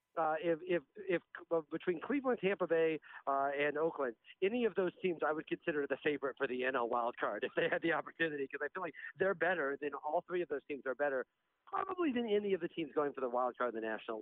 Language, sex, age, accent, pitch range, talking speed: English, male, 50-69, American, 140-185 Hz, 245 wpm